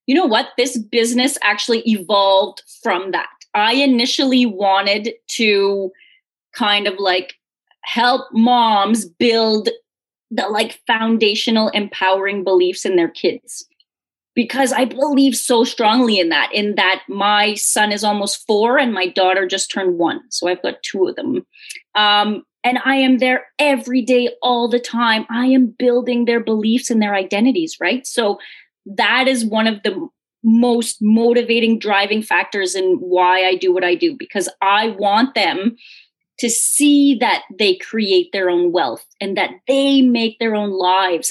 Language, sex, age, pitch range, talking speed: English, female, 20-39, 205-255 Hz, 155 wpm